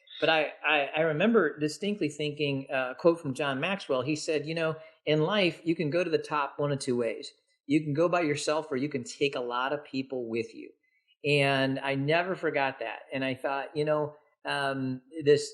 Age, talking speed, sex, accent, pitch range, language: 40-59, 215 wpm, male, American, 135-165 Hz, English